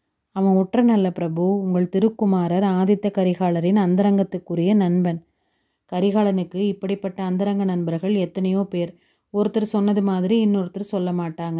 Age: 30-49